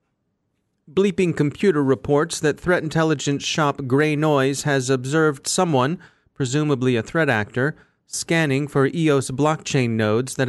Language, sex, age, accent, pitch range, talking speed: English, male, 40-59, American, 115-145 Hz, 125 wpm